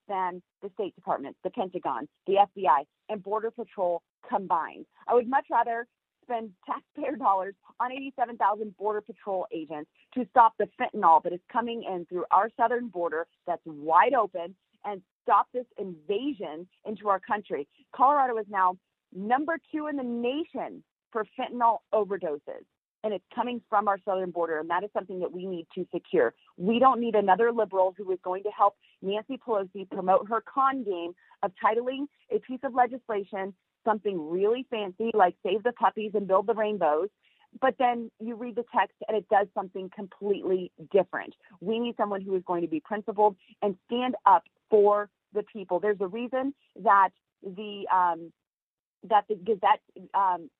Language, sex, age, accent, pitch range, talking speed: English, female, 40-59, American, 190-235 Hz, 170 wpm